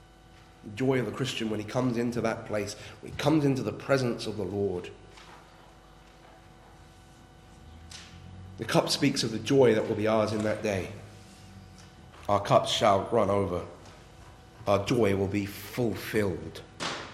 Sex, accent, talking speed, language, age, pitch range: male, British, 150 wpm, English, 40-59, 95-135 Hz